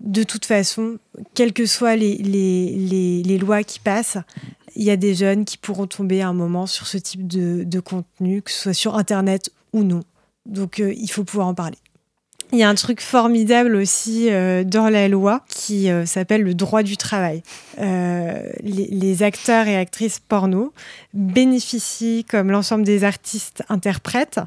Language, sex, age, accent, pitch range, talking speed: French, female, 20-39, French, 185-220 Hz, 180 wpm